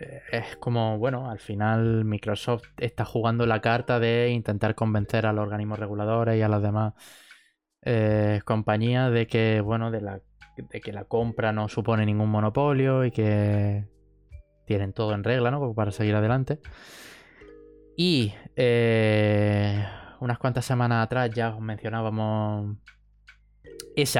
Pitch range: 105-120 Hz